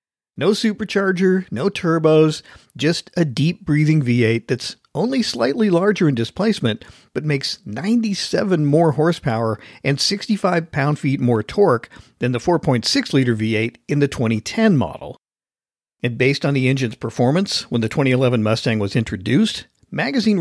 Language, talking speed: English, 130 wpm